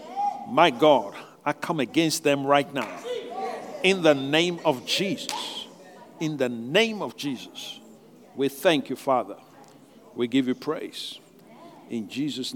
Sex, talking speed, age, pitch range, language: male, 135 wpm, 50-69, 125-210 Hz, English